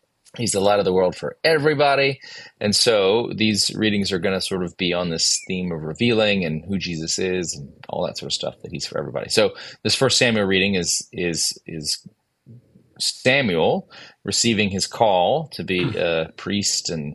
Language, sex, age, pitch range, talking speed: English, male, 30-49, 90-110 Hz, 195 wpm